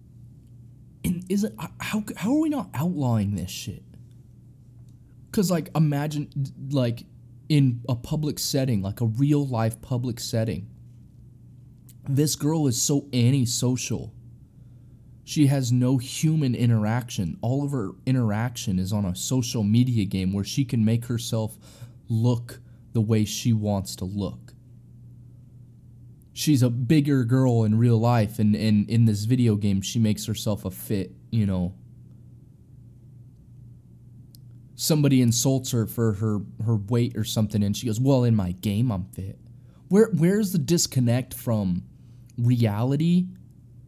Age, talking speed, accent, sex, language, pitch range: 20-39, 135 wpm, American, male, English, 110-130 Hz